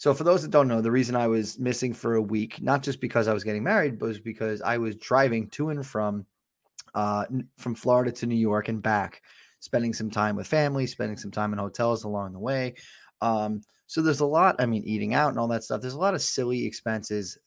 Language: English